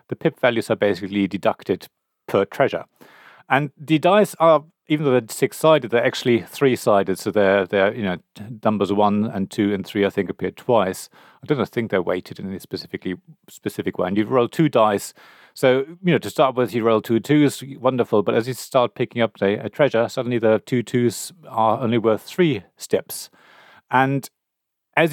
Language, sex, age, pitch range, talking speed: English, male, 40-59, 105-130 Hz, 195 wpm